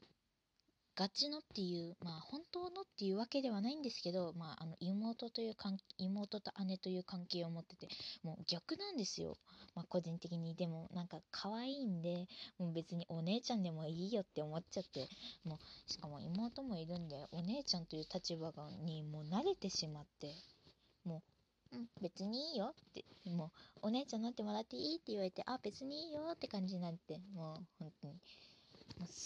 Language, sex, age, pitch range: Japanese, female, 20-39, 165-225 Hz